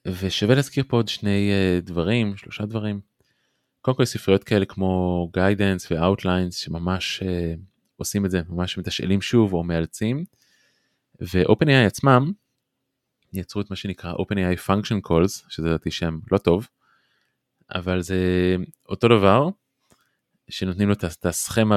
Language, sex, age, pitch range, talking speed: Hebrew, male, 20-39, 90-110 Hz, 135 wpm